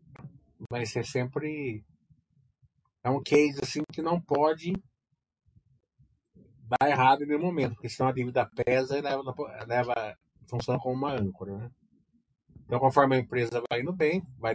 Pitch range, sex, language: 115-140 Hz, male, Portuguese